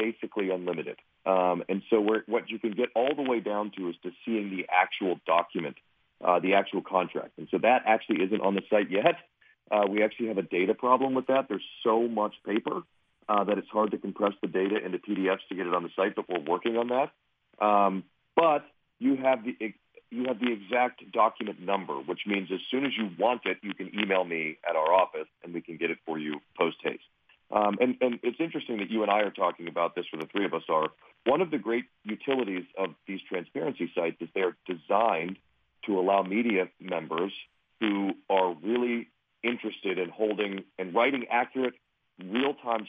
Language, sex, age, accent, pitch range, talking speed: English, male, 40-59, American, 95-120 Hz, 205 wpm